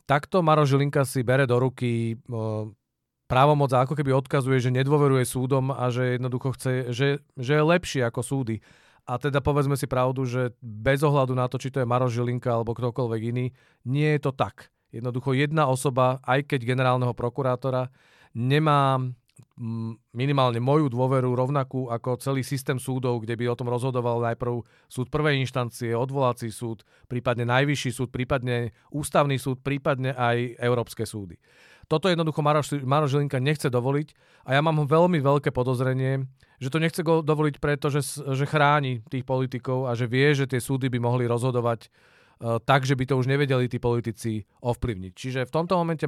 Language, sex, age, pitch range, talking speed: Czech, male, 40-59, 120-140 Hz, 165 wpm